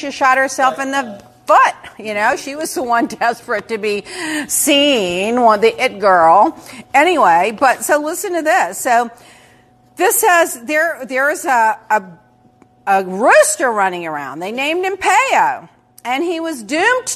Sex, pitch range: female, 235-340 Hz